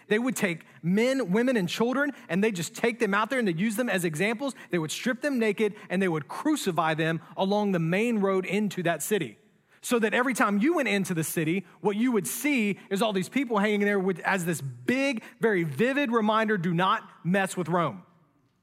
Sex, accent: male, American